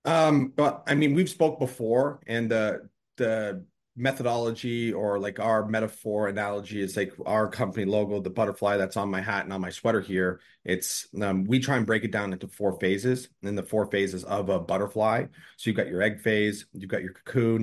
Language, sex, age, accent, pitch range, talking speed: English, male, 30-49, American, 95-115 Hz, 210 wpm